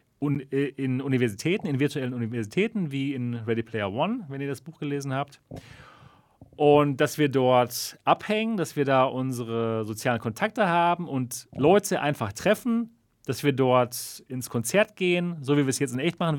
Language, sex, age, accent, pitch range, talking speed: German, male, 40-59, German, 120-170 Hz, 170 wpm